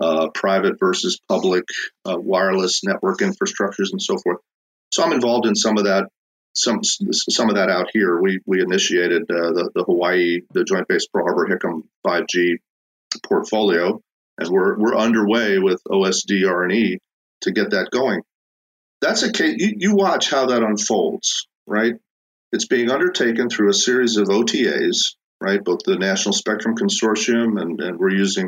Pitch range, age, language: 95-115 Hz, 40-59, English